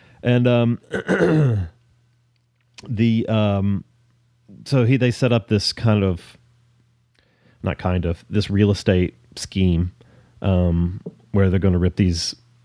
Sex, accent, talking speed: male, American, 125 wpm